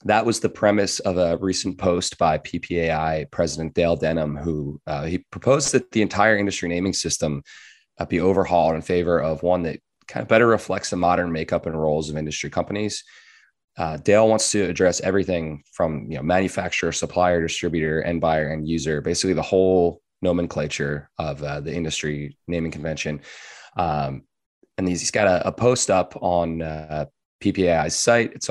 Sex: male